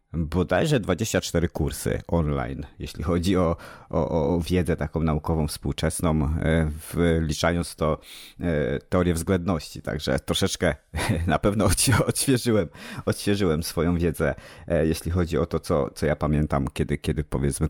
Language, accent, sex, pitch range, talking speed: Polish, native, male, 75-90 Hz, 120 wpm